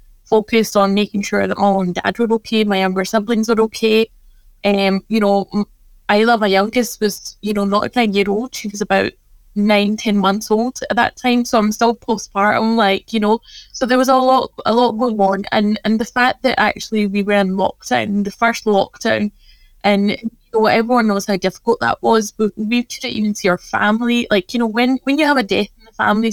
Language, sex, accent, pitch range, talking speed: English, female, British, 205-235 Hz, 220 wpm